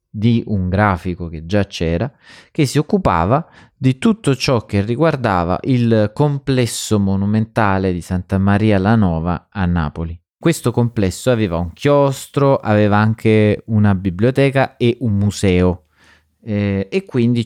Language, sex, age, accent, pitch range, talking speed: Italian, male, 30-49, native, 100-125 Hz, 135 wpm